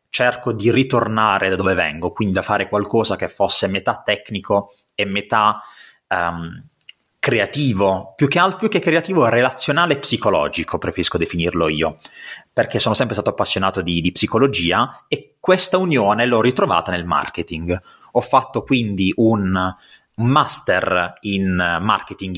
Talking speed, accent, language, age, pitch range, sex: 135 wpm, native, Italian, 30-49, 95-120 Hz, male